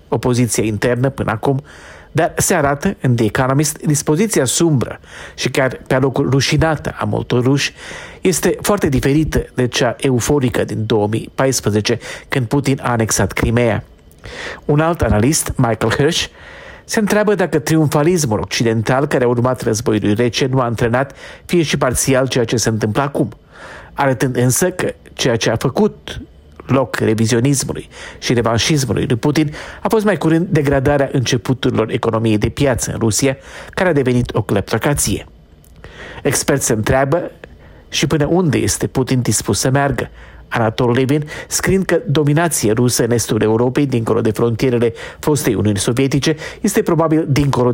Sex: male